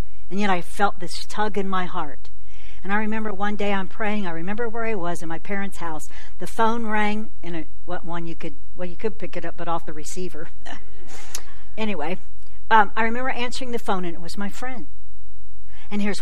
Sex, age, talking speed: female, 60-79, 215 wpm